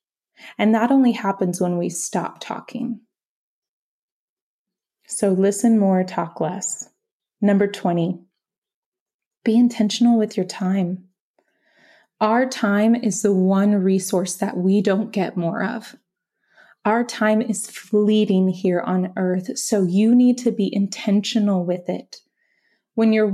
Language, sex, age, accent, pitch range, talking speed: English, female, 20-39, American, 195-245 Hz, 125 wpm